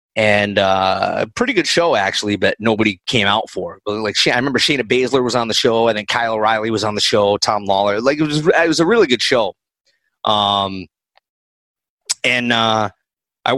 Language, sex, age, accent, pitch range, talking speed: English, male, 30-49, American, 100-135 Hz, 200 wpm